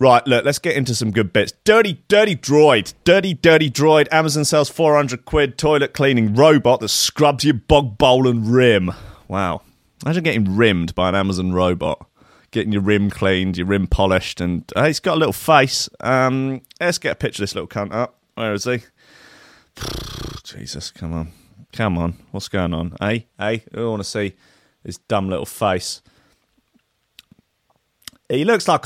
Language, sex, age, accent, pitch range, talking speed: English, male, 30-49, British, 100-135 Hz, 180 wpm